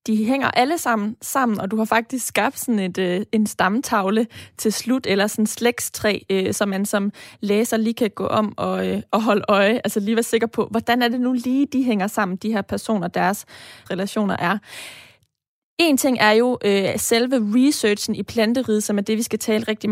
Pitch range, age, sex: 210-250 Hz, 20-39, female